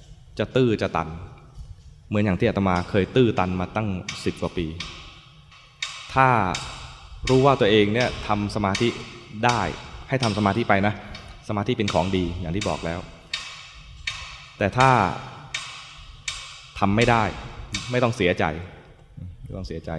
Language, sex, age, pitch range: English, male, 20-39, 85-110 Hz